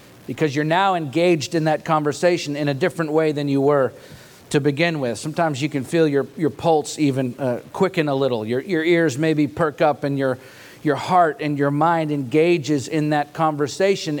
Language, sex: English, male